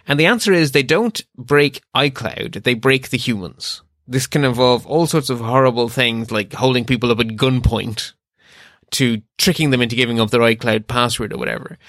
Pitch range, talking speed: 115-140 Hz, 185 wpm